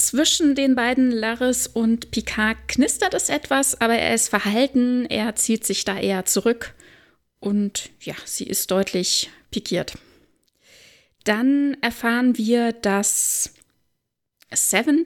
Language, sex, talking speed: German, female, 120 wpm